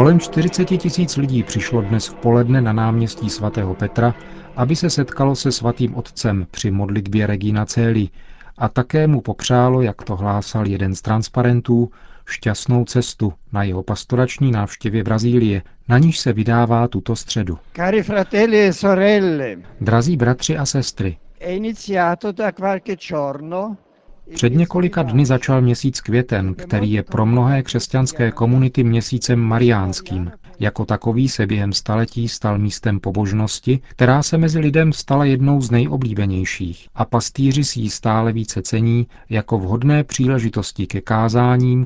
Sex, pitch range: male, 105-135 Hz